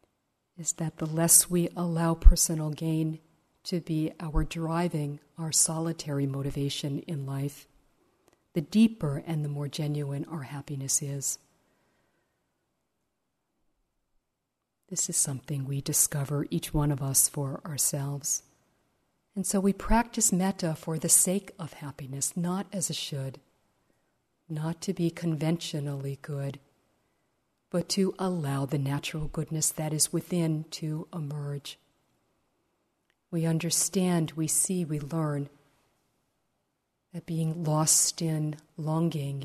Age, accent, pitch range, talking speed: 50-69, American, 145-175 Hz, 120 wpm